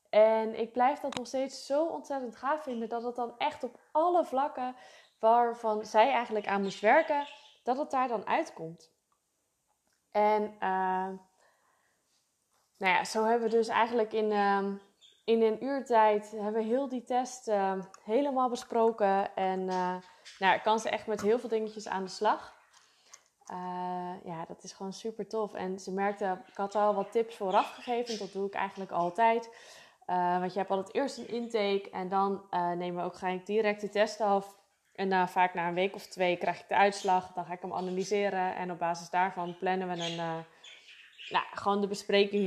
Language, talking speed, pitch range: Dutch, 185 wpm, 185-225 Hz